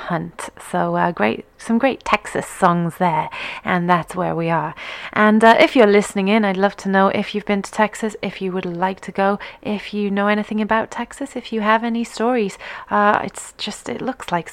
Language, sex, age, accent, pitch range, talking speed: English, female, 30-49, British, 195-230 Hz, 215 wpm